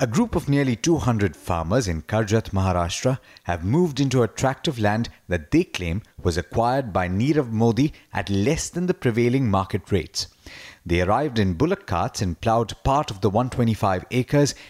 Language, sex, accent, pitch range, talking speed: English, male, Indian, 95-130 Hz, 175 wpm